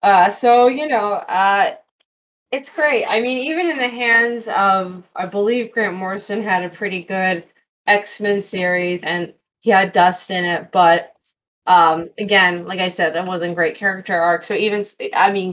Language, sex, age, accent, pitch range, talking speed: English, female, 20-39, American, 180-215 Hz, 175 wpm